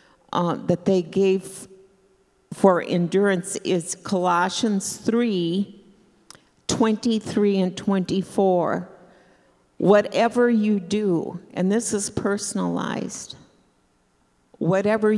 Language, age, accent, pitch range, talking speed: English, 50-69, American, 175-205 Hz, 80 wpm